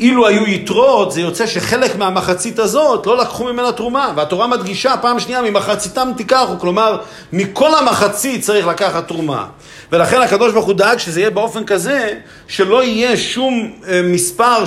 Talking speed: 150 wpm